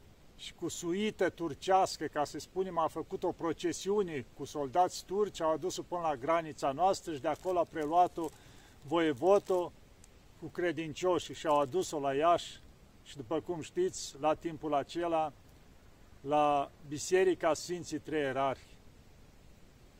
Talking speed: 130 wpm